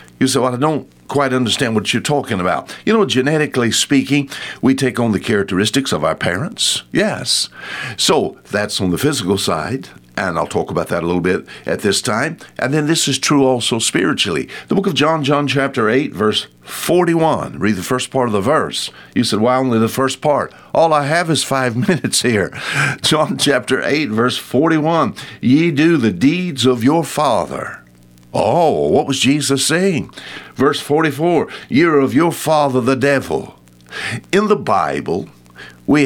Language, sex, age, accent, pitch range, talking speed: English, male, 60-79, American, 105-145 Hz, 180 wpm